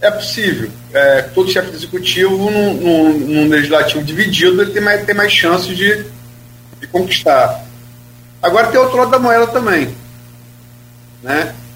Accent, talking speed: Brazilian, 135 wpm